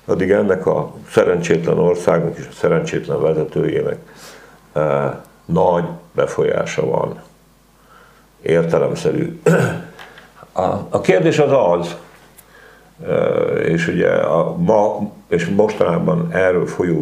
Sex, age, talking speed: male, 60-79, 85 wpm